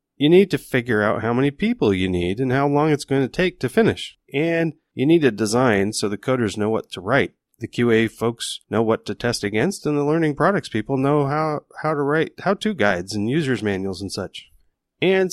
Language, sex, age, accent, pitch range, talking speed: English, male, 30-49, American, 95-130 Hz, 225 wpm